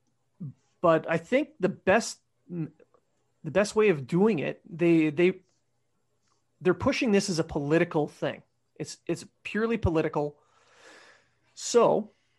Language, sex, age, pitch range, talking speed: English, male, 30-49, 145-180 Hz, 120 wpm